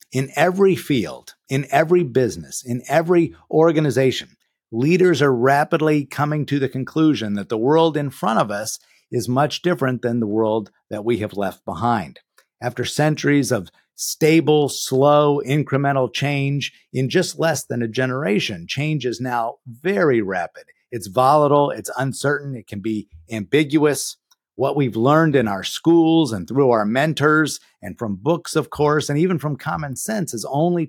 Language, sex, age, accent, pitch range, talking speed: English, male, 50-69, American, 115-150 Hz, 160 wpm